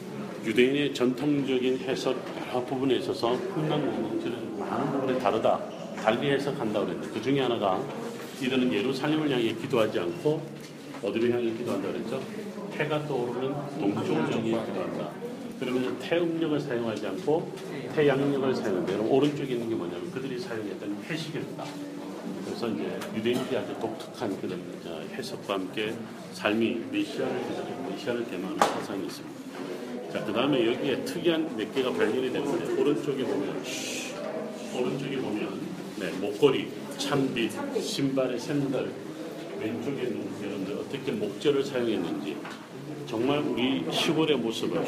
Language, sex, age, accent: Korean, male, 40-59, native